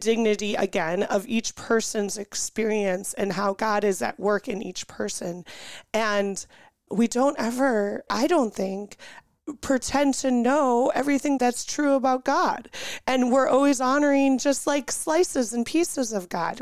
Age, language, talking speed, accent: 30-49, English, 150 wpm, American